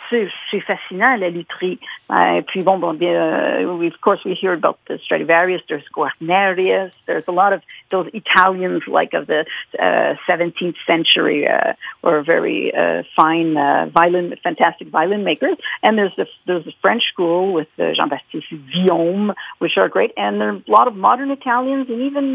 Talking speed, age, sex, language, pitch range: 150 wpm, 50-69, female, English, 180-245 Hz